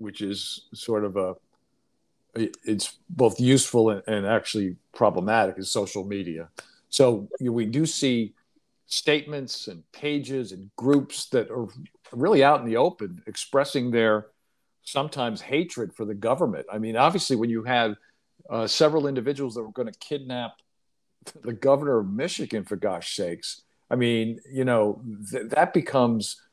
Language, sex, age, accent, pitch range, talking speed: English, male, 50-69, American, 115-135 Hz, 145 wpm